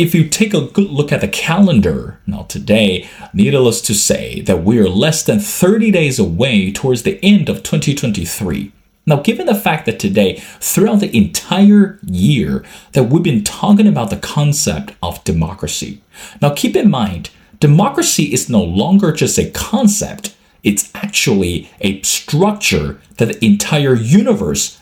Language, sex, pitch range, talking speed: English, male, 145-205 Hz, 155 wpm